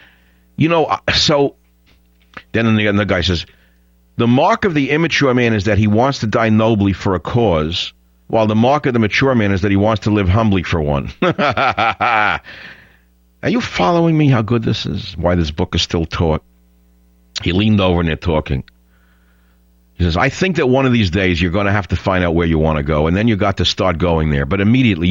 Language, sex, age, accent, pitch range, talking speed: English, male, 50-69, American, 75-115 Hz, 215 wpm